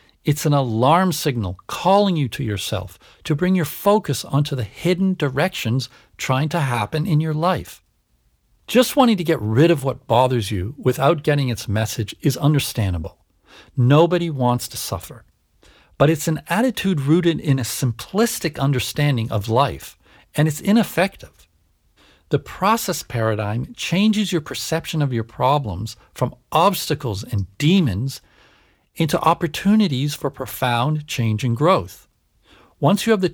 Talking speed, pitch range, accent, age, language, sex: 140 wpm, 110-170 Hz, American, 50-69, English, male